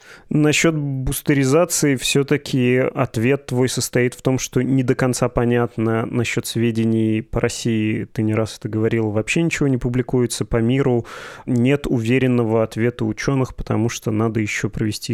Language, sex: Russian, male